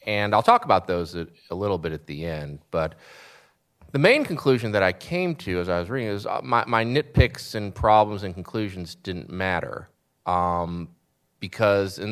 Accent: American